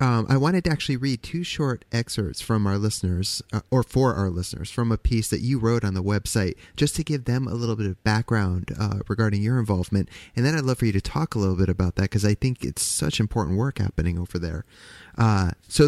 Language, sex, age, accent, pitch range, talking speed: English, male, 30-49, American, 95-115 Hz, 240 wpm